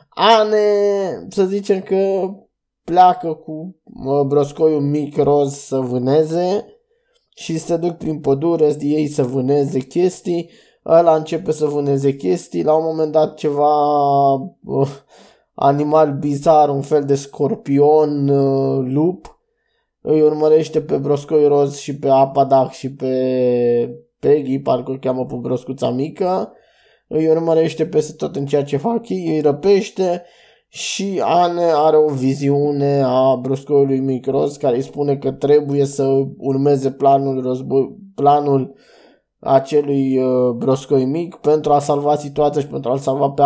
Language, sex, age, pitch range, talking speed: Romanian, male, 20-39, 135-165 Hz, 135 wpm